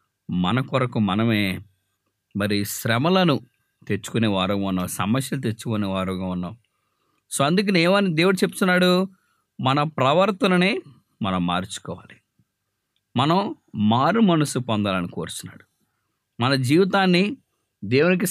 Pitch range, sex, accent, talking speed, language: 110-170 Hz, male, Indian, 85 wpm, English